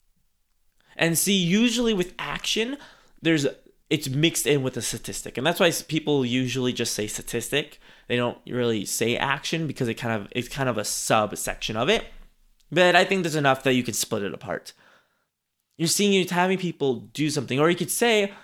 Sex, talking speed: male, 190 wpm